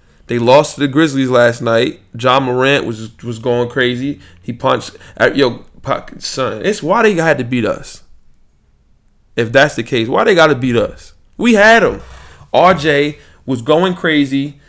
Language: English